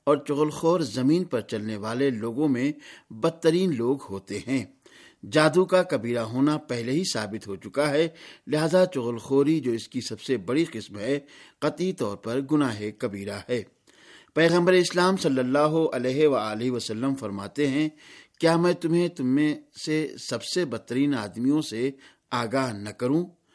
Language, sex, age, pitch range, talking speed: Urdu, male, 50-69, 120-160 Hz, 155 wpm